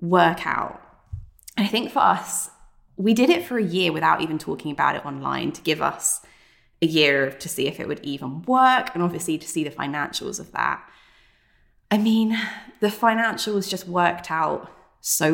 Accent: British